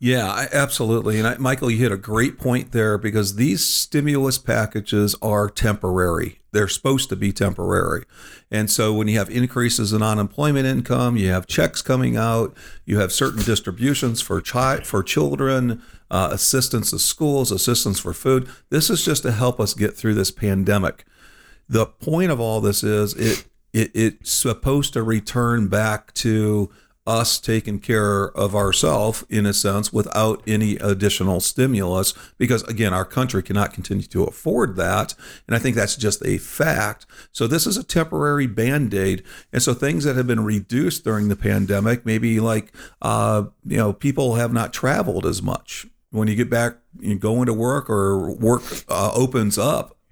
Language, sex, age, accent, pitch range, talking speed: English, male, 50-69, American, 105-125 Hz, 175 wpm